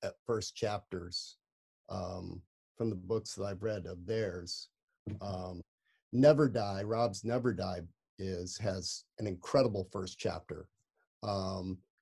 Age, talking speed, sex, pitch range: 40-59, 125 wpm, male, 100-130 Hz